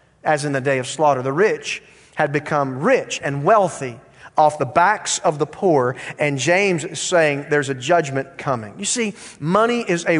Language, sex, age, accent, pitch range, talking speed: English, male, 40-59, American, 145-220 Hz, 190 wpm